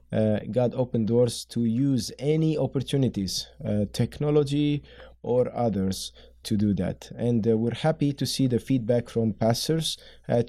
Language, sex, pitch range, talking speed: English, male, 105-125 Hz, 150 wpm